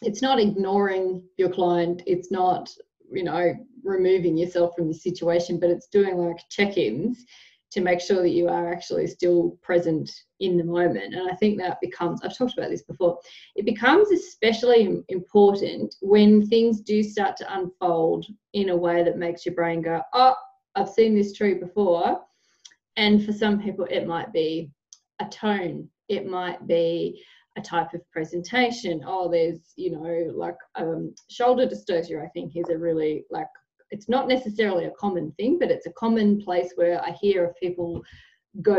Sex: female